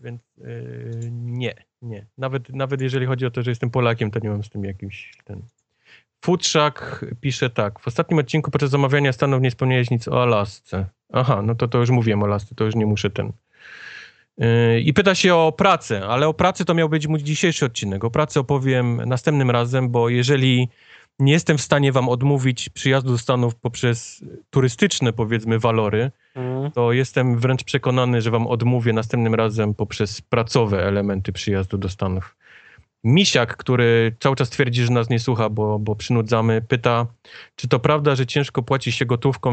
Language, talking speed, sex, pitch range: Polish, 180 wpm, male, 110-135 Hz